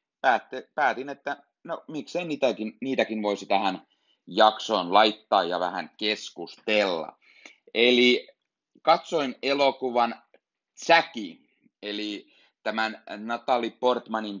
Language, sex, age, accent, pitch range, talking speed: Finnish, male, 30-49, native, 95-110 Hz, 85 wpm